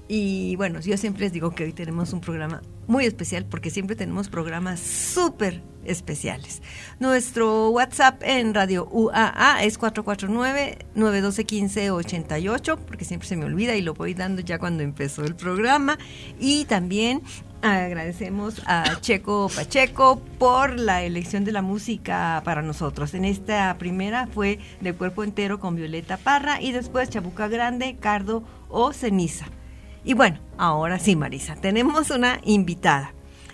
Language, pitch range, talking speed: Spanish, 180-230 Hz, 140 wpm